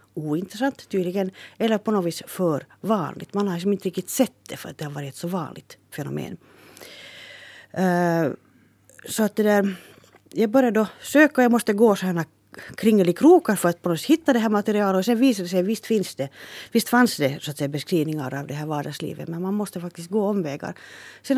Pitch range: 155-205 Hz